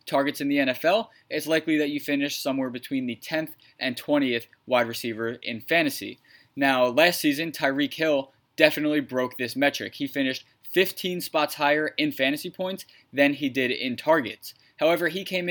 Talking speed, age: 170 wpm, 20-39